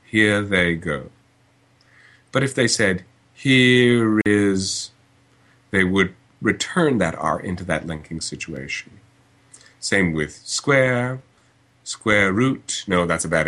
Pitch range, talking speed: 95-130 Hz, 120 wpm